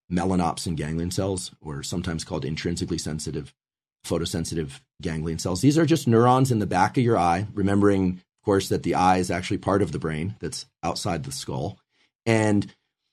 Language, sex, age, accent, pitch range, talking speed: English, male, 40-59, American, 90-125 Hz, 175 wpm